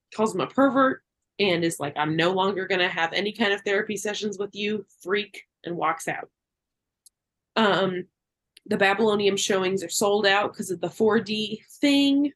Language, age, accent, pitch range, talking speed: English, 20-39, American, 175-205 Hz, 175 wpm